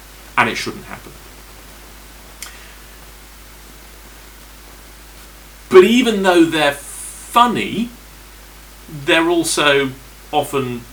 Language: English